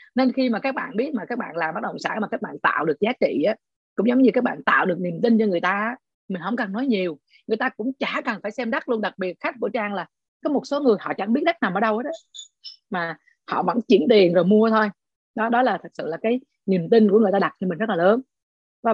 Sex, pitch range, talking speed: female, 175-240 Hz, 300 wpm